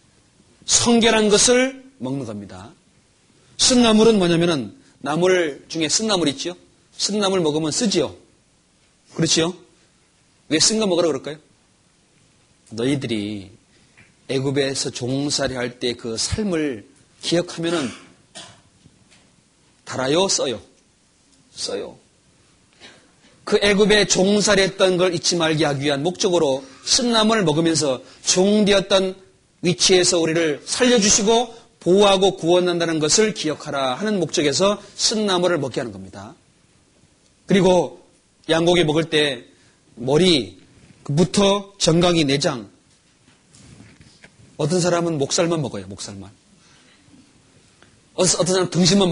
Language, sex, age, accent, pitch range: Korean, male, 30-49, native, 140-195 Hz